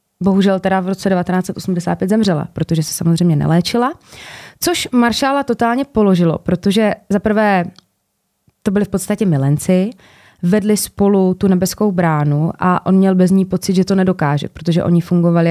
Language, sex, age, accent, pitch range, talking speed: Czech, female, 20-39, native, 175-215 Hz, 150 wpm